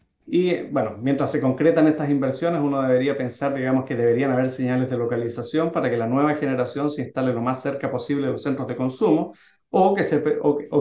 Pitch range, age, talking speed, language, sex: 125-145 Hz, 30-49, 210 wpm, Spanish, male